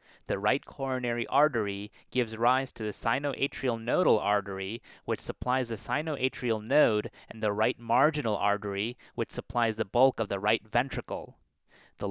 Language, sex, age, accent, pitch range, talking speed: English, male, 30-49, American, 105-135 Hz, 150 wpm